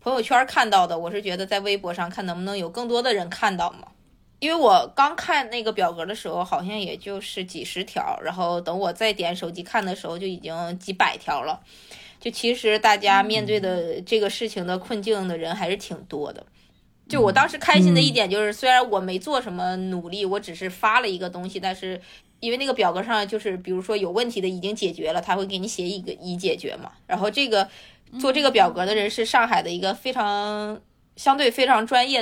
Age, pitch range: 20-39, 180-225 Hz